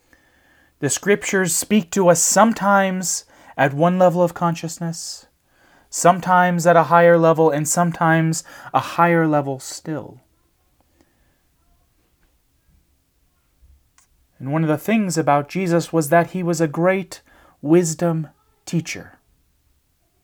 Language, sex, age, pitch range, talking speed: English, male, 30-49, 145-175 Hz, 110 wpm